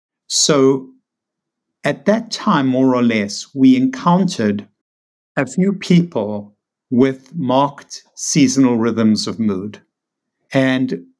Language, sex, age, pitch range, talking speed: English, male, 60-79, 125-165 Hz, 100 wpm